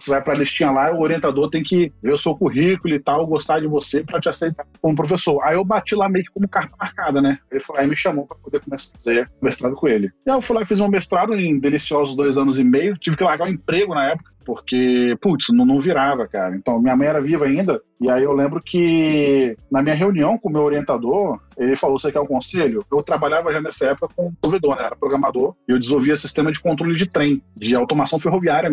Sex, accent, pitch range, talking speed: male, Brazilian, 135-175 Hz, 245 wpm